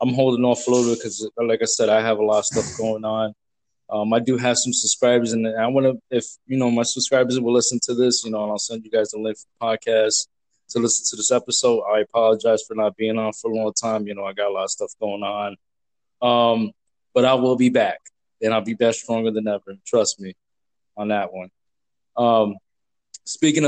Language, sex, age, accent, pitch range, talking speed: English, male, 20-39, American, 110-135 Hz, 240 wpm